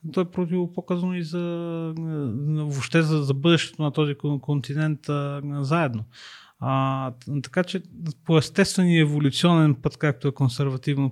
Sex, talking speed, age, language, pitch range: male, 135 wpm, 30-49, Bulgarian, 130-160 Hz